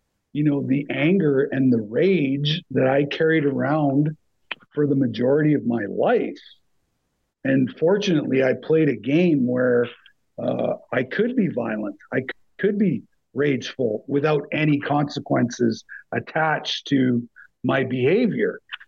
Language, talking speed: English, 125 wpm